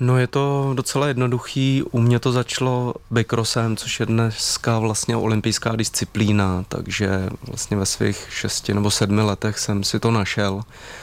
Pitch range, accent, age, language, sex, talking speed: 100-110 Hz, native, 20-39, Czech, male, 150 wpm